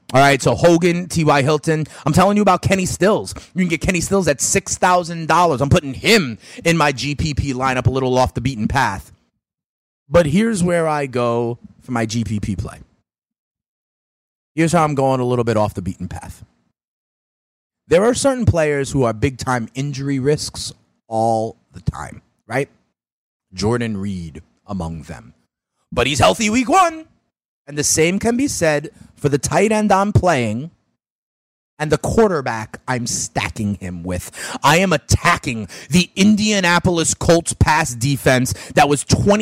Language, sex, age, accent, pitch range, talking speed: English, male, 30-49, American, 130-180 Hz, 155 wpm